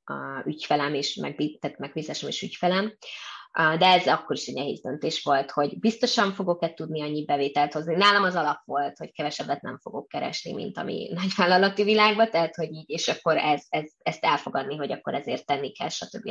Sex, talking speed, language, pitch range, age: female, 185 wpm, Hungarian, 155-200 Hz, 20-39